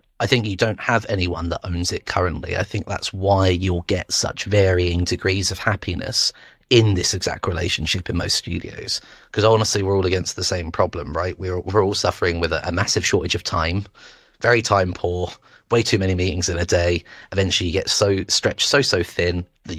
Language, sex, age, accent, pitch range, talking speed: English, male, 30-49, British, 90-105 Hz, 200 wpm